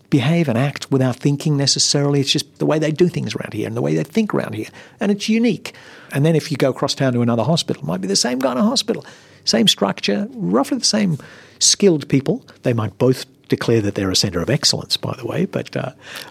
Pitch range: 125-175 Hz